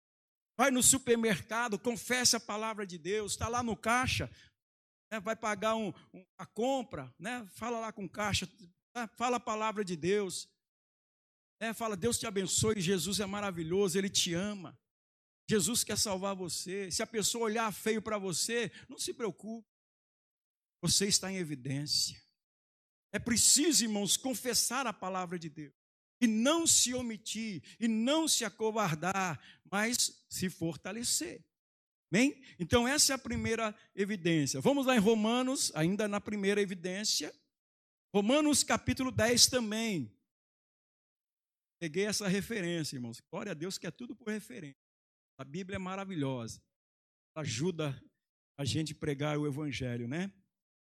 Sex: male